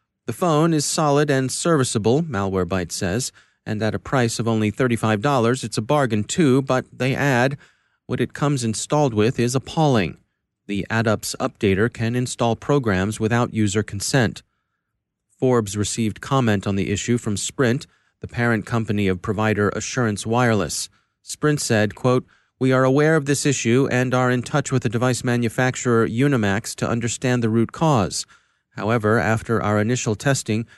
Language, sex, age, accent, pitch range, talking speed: English, male, 30-49, American, 110-130 Hz, 160 wpm